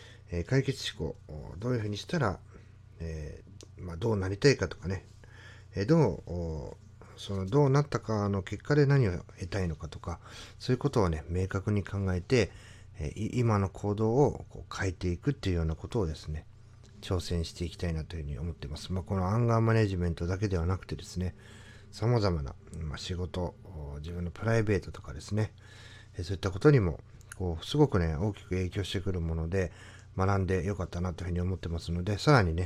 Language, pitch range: Japanese, 90-110 Hz